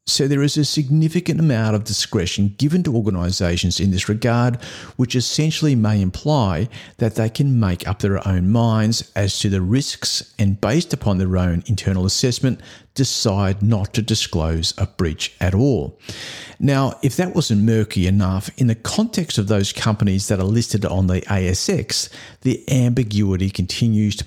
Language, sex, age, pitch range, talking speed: English, male, 50-69, 95-120 Hz, 165 wpm